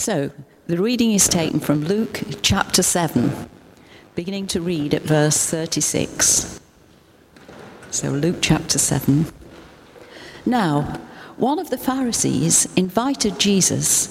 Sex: female